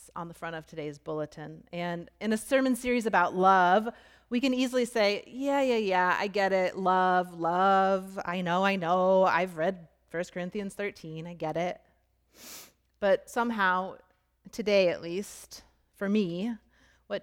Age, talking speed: 30-49, 155 wpm